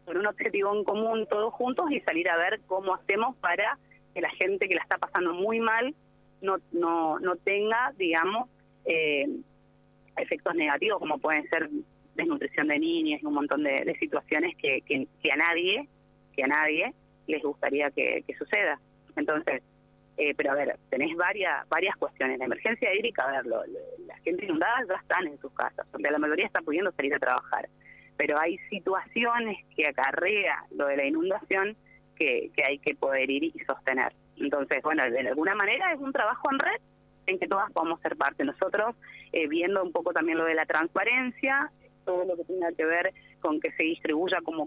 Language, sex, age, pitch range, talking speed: Spanish, female, 30-49, 180-260 Hz, 185 wpm